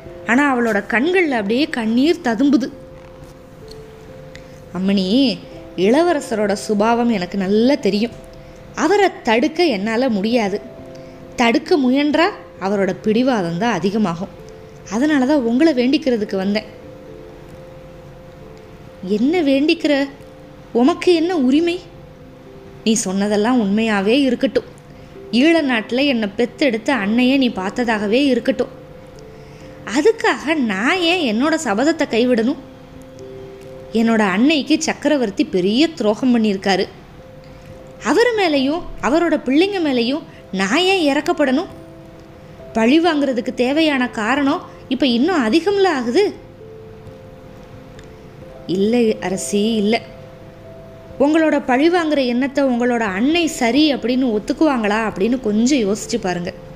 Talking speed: 90 wpm